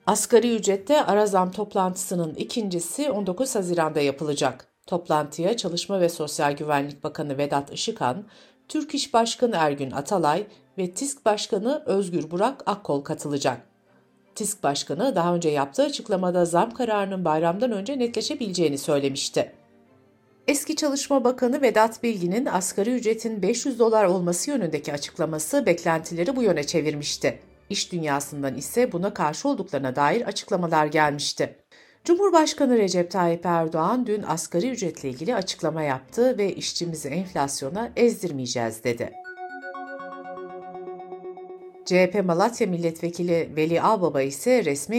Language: Turkish